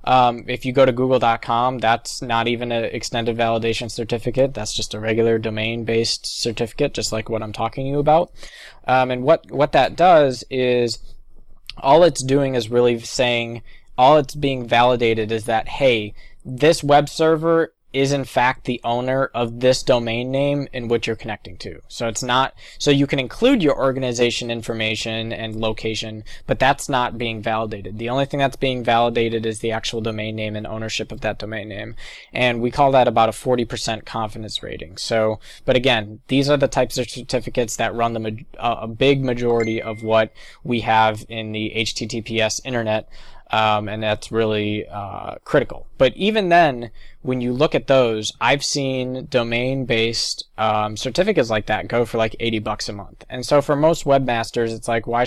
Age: 20-39